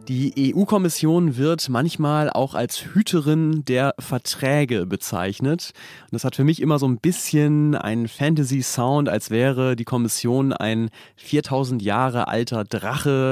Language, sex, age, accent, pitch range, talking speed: German, male, 30-49, German, 115-145 Hz, 135 wpm